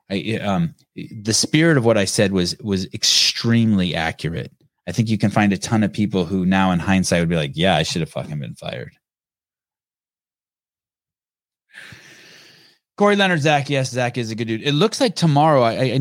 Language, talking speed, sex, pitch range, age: English, 185 wpm, male, 90-135 Hz, 20-39